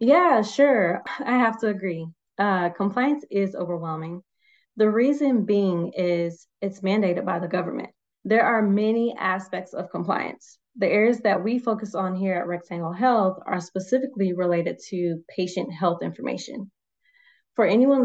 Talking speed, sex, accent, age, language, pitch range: 145 wpm, female, American, 20-39, English, 180-230 Hz